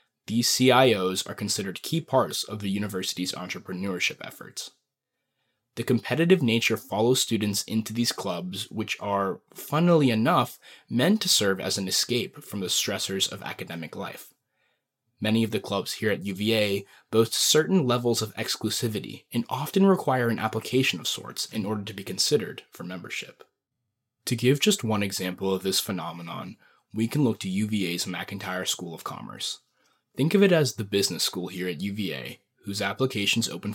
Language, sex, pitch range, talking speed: English, male, 95-125 Hz, 160 wpm